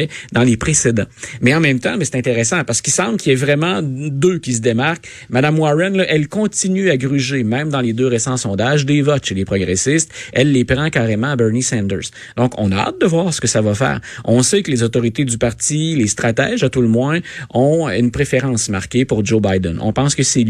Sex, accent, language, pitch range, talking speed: male, Canadian, French, 110-145 Hz, 235 wpm